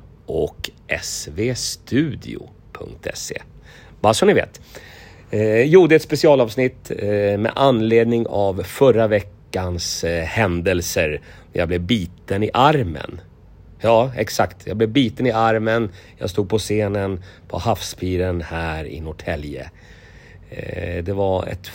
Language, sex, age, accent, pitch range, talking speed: Finnish, male, 30-49, Swedish, 90-115 Hz, 115 wpm